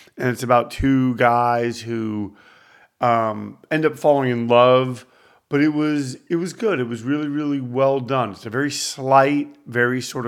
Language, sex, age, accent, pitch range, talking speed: English, male, 40-59, American, 115-135 Hz, 170 wpm